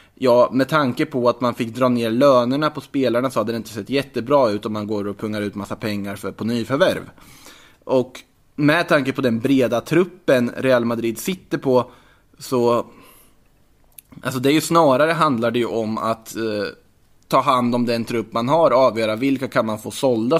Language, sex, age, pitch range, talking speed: Swedish, male, 20-39, 110-135 Hz, 200 wpm